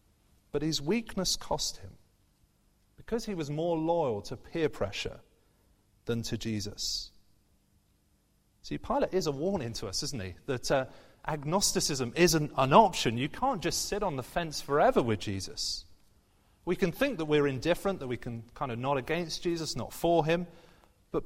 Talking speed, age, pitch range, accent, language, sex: 165 wpm, 30-49, 100-170 Hz, British, English, male